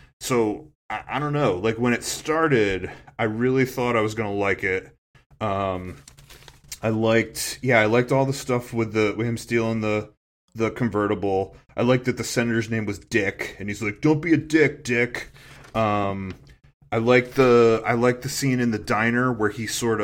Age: 20-39